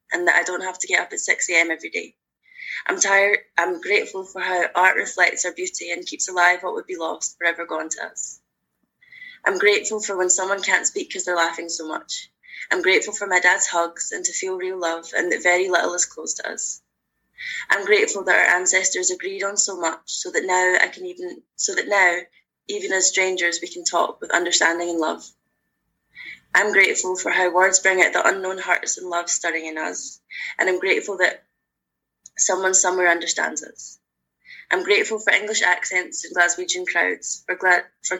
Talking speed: 200 wpm